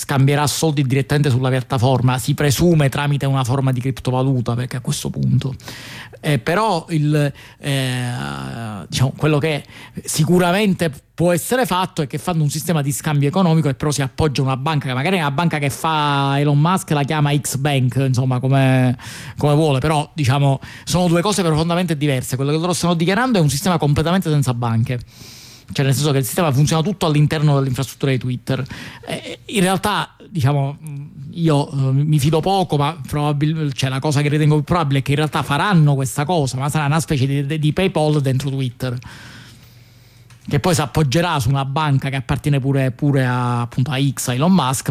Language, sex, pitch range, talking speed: Italian, male, 130-155 Hz, 180 wpm